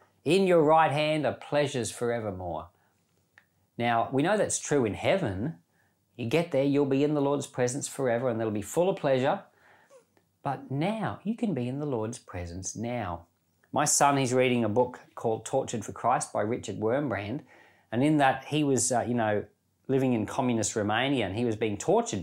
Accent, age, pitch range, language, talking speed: Australian, 40-59, 105-145 Hz, English, 190 wpm